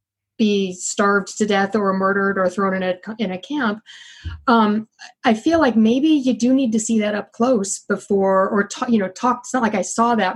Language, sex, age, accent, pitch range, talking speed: English, female, 30-49, American, 195-235 Hz, 220 wpm